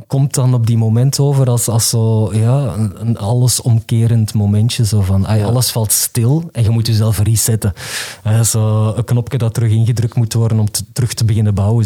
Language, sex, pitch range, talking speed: Dutch, male, 110-125 Hz, 195 wpm